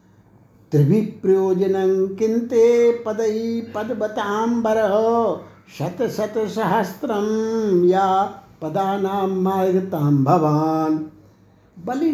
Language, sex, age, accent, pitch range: Hindi, male, 60-79, native, 165-225 Hz